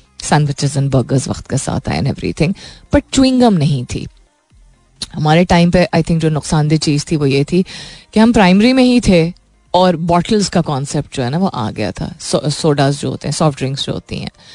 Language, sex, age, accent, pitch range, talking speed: Hindi, female, 30-49, native, 155-225 Hz, 215 wpm